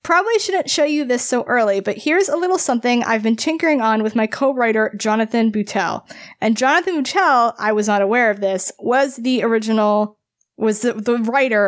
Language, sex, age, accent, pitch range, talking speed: English, female, 20-39, American, 205-265 Hz, 190 wpm